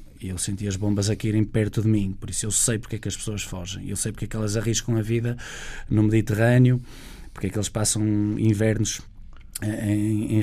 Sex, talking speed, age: male, 215 wpm, 20-39